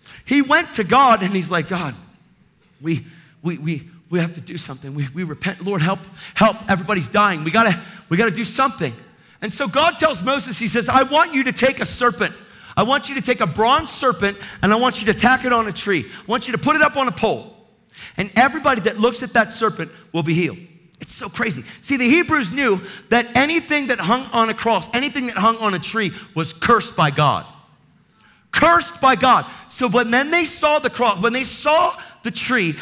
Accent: American